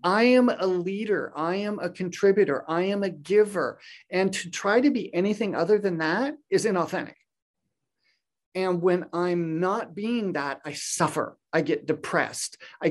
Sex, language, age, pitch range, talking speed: male, English, 40-59, 155-200 Hz, 165 wpm